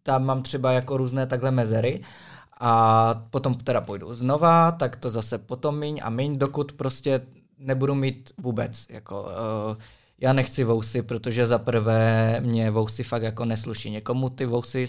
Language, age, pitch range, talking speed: Czech, 20-39, 115-130 Hz, 155 wpm